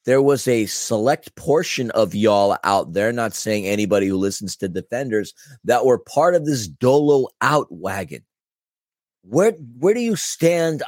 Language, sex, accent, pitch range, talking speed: English, male, American, 115-145 Hz, 160 wpm